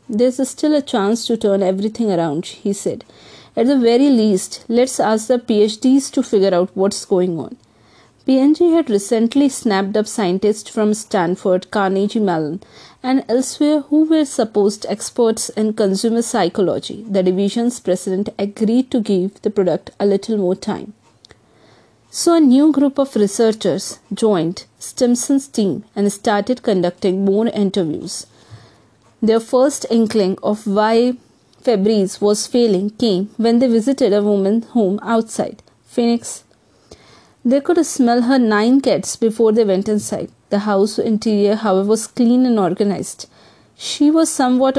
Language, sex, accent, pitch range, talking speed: English, female, Indian, 200-245 Hz, 145 wpm